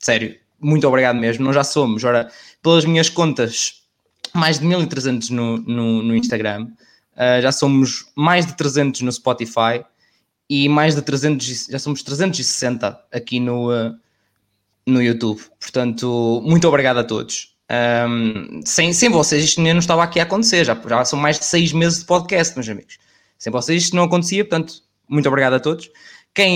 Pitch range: 120-165 Hz